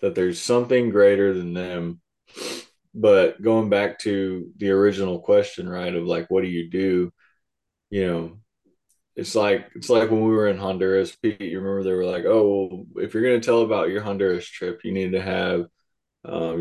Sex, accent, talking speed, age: male, American, 190 wpm, 20-39